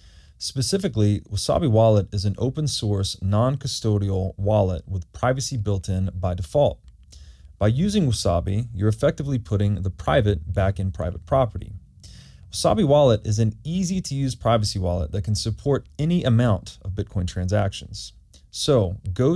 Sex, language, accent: male, English, American